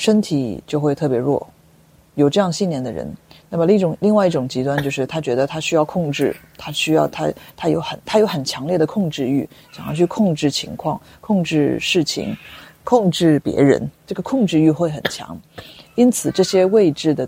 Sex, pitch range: female, 135-170 Hz